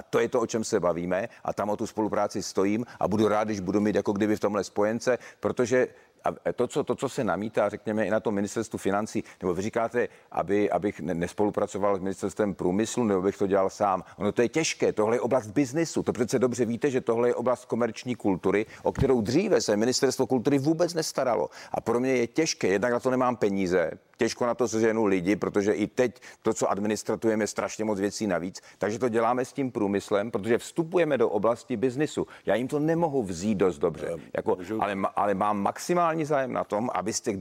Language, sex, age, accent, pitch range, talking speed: Czech, male, 40-59, native, 105-130 Hz, 215 wpm